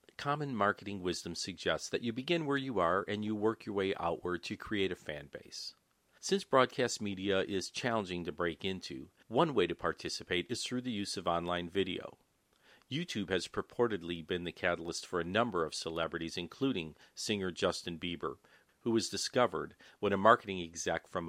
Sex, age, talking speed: male, 50-69, 180 wpm